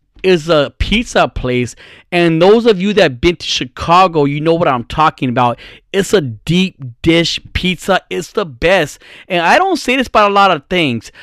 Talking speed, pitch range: 200 wpm, 120-180 Hz